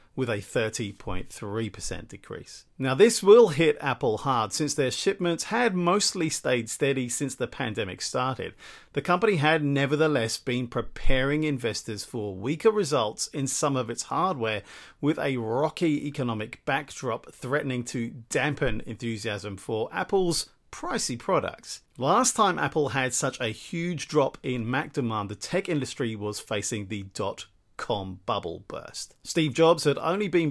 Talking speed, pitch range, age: 150 wpm, 115-155 Hz, 40-59